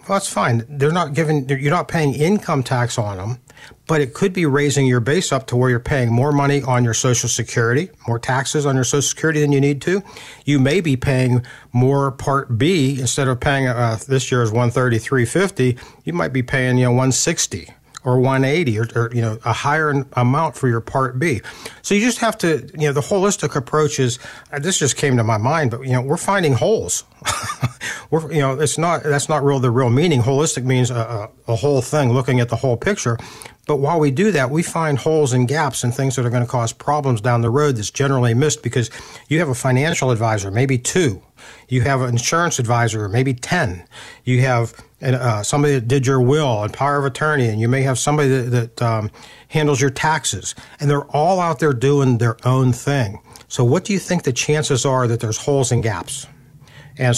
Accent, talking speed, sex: American, 220 wpm, male